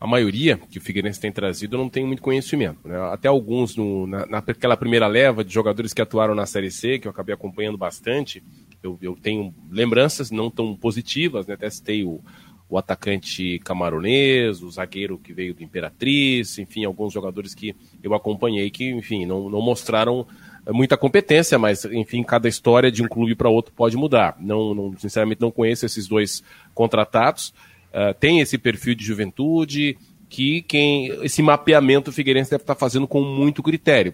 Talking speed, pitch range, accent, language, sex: 180 wpm, 110-145 Hz, Brazilian, Portuguese, male